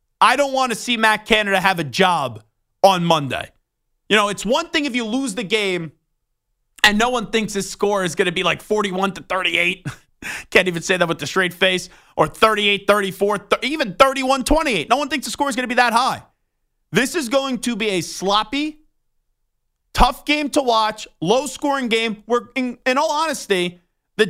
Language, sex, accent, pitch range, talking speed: English, male, American, 185-240 Hz, 200 wpm